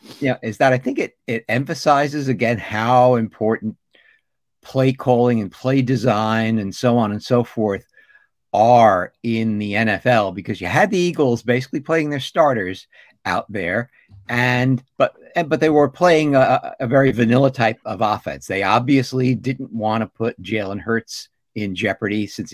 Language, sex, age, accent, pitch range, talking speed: English, male, 50-69, American, 105-130 Hz, 165 wpm